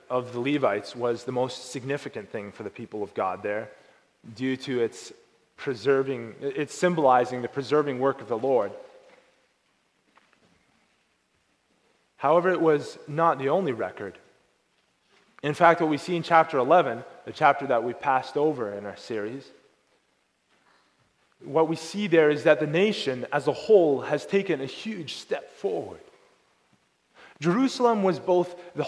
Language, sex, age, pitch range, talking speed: English, male, 20-39, 125-175 Hz, 150 wpm